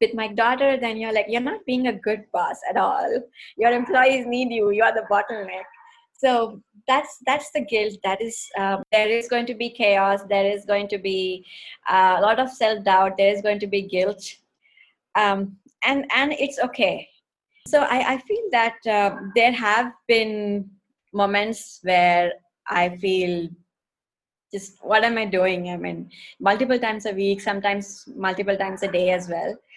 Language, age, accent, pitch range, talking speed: English, 20-39, Indian, 195-245 Hz, 175 wpm